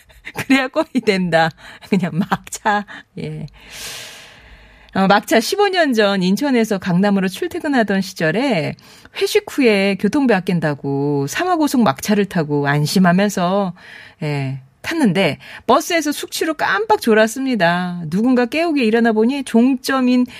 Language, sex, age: Korean, female, 40-59